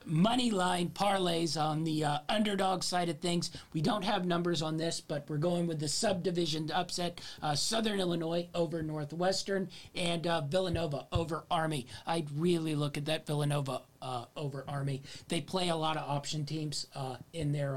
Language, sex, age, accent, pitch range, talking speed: English, male, 40-59, American, 135-170 Hz, 175 wpm